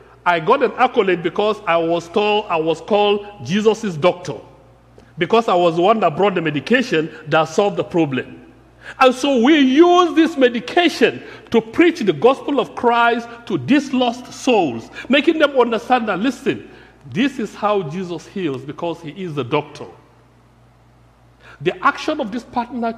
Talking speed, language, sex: 155 wpm, English, male